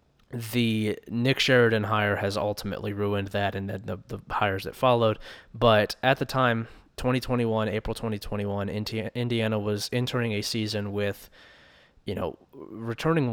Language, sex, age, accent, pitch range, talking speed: English, male, 20-39, American, 100-115 Hz, 135 wpm